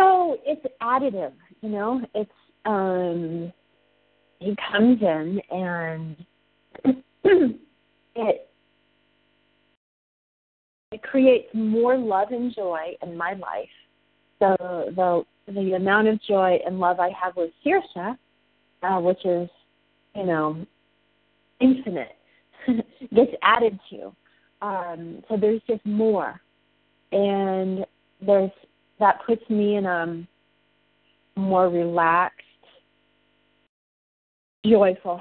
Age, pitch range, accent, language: 40-59, 175-220 Hz, American, English